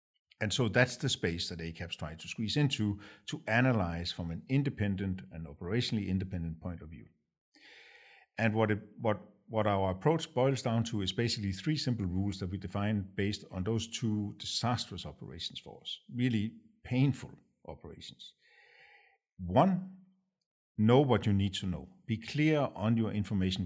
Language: English